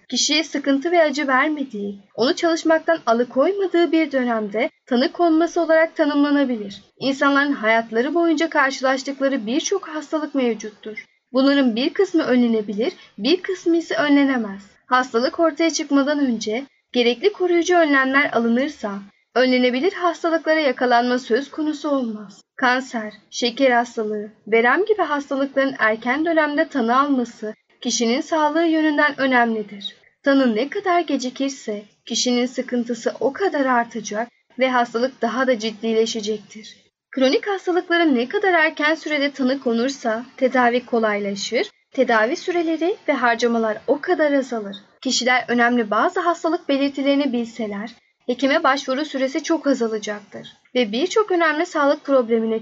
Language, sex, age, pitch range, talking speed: Turkish, female, 10-29, 235-315 Hz, 120 wpm